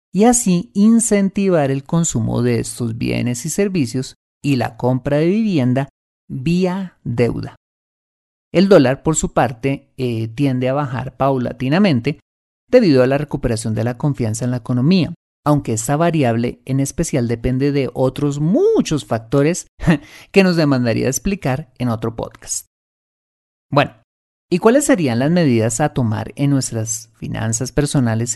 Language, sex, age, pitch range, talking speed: Spanish, male, 30-49, 120-160 Hz, 140 wpm